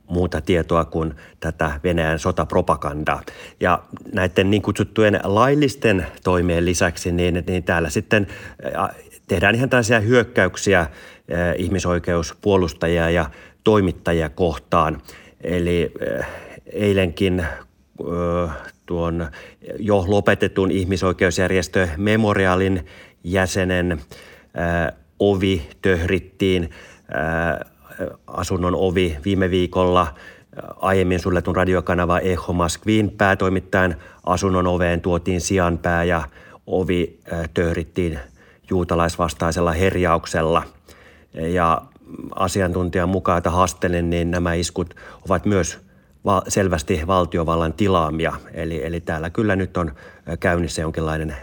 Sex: male